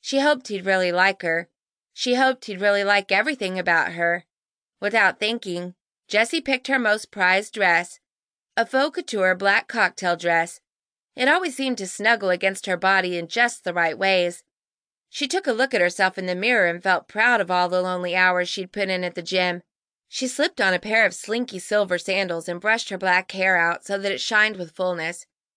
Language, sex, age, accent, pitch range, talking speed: English, female, 30-49, American, 180-225 Hz, 200 wpm